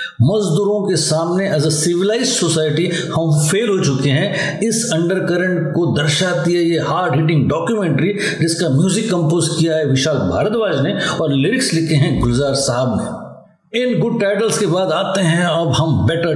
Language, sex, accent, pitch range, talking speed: Hindi, male, native, 155-195 Hz, 170 wpm